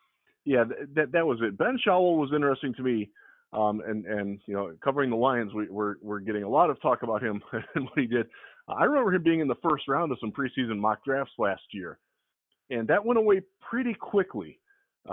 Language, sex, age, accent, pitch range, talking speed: English, male, 20-39, American, 115-155 Hz, 225 wpm